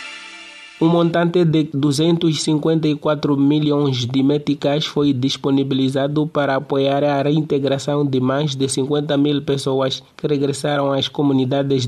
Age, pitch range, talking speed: 30-49, 135-145 Hz, 115 wpm